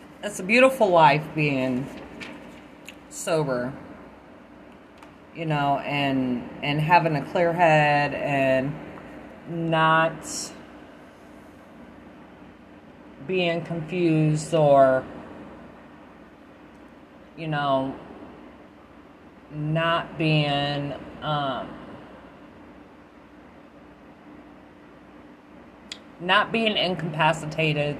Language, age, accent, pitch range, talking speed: English, 30-49, American, 145-190 Hz, 60 wpm